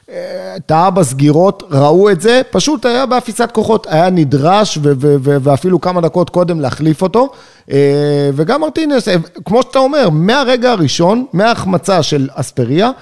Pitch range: 145-205 Hz